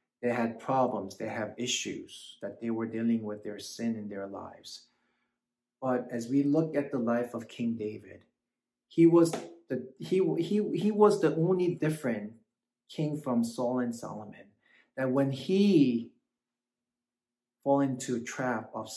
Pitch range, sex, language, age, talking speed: 115-130 Hz, male, English, 30-49, 155 wpm